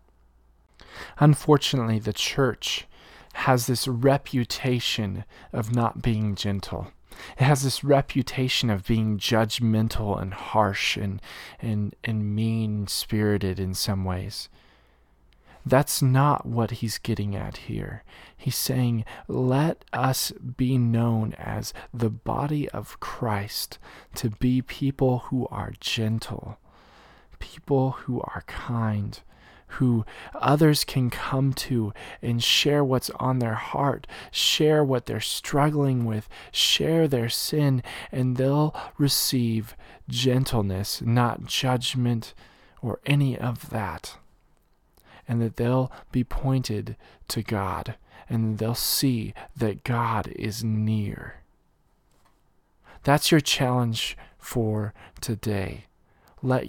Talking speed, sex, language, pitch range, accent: 110 wpm, male, English, 105-130 Hz, American